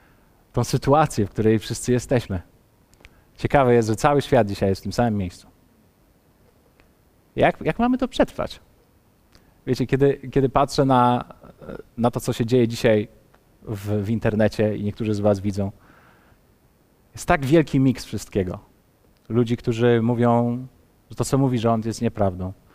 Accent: native